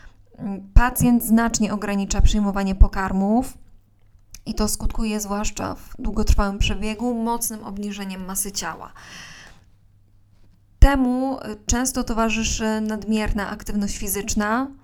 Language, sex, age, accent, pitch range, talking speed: Polish, female, 20-39, native, 185-220 Hz, 90 wpm